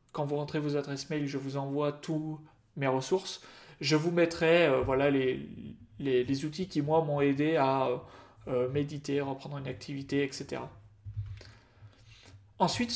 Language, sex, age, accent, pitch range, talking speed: French, male, 30-49, French, 130-160 Hz, 155 wpm